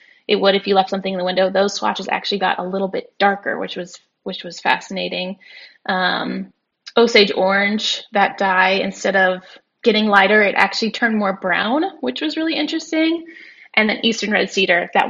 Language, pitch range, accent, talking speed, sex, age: English, 190-245 Hz, American, 185 wpm, female, 10-29